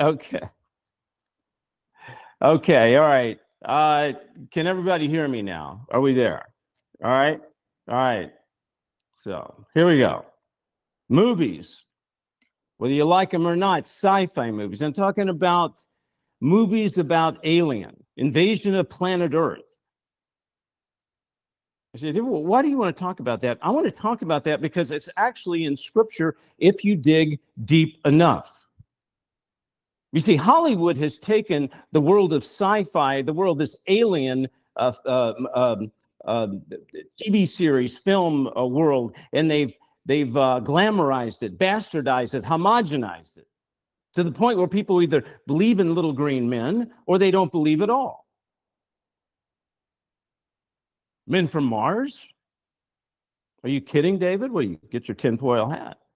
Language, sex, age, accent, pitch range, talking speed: English, male, 50-69, American, 135-190 Hz, 140 wpm